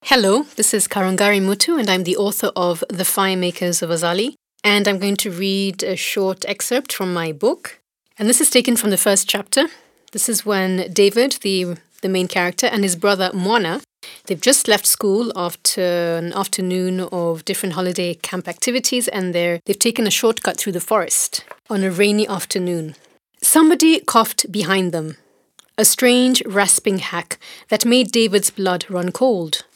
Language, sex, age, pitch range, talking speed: English, female, 30-49, 185-235 Hz, 170 wpm